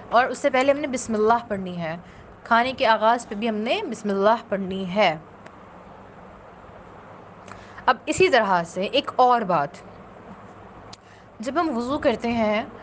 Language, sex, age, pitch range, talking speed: Urdu, female, 20-39, 195-260 Hz, 155 wpm